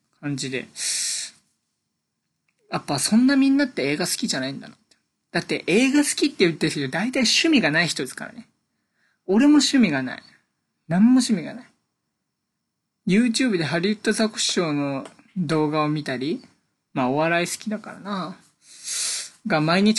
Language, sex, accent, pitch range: Japanese, male, native, 145-225 Hz